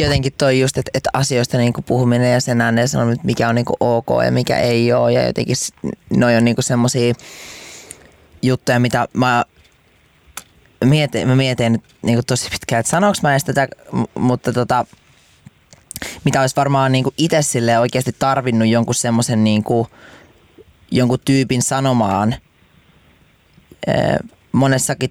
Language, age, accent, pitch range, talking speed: Finnish, 20-39, native, 115-130 Hz, 135 wpm